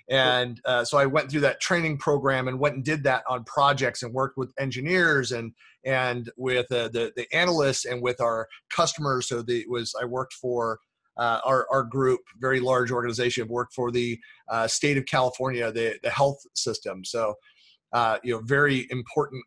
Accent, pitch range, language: American, 120-145 Hz, English